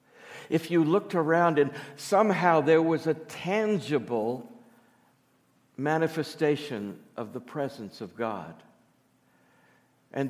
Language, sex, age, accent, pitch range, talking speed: English, male, 60-79, American, 120-160 Hz, 100 wpm